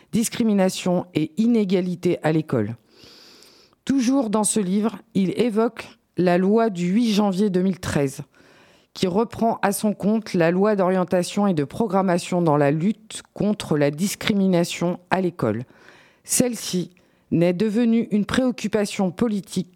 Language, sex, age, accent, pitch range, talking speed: French, female, 50-69, French, 175-220 Hz, 130 wpm